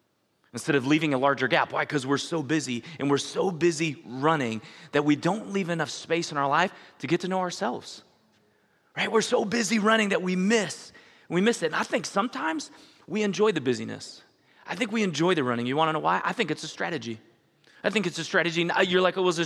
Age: 30-49